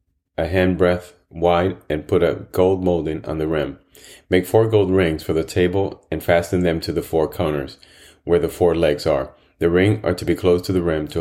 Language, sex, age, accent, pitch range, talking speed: English, male, 30-49, American, 80-95 Hz, 220 wpm